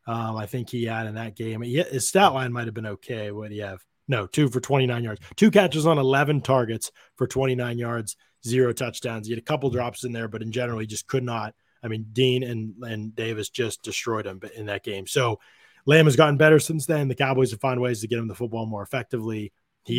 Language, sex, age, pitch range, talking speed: English, male, 20-39, 115-135 Hz, 245 wpm